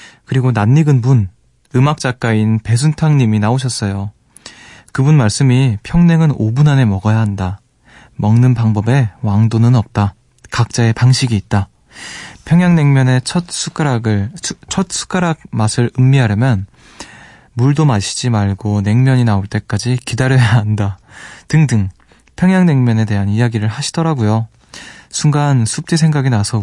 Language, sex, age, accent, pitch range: Korean, male, 20-39, native, 110-140 Hz